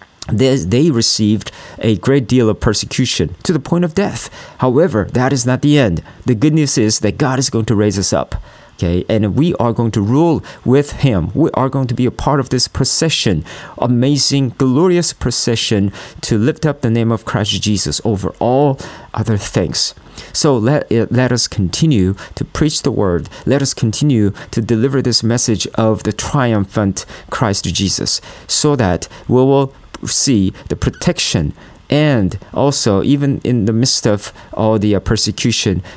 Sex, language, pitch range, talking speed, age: male, English, 100-130 Hz, 170 wpm, 40-59